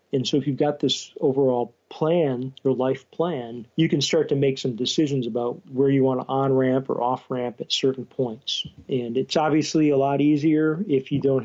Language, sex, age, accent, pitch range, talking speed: English, male, 40-59, American, 125-145 Hz, 200 wpm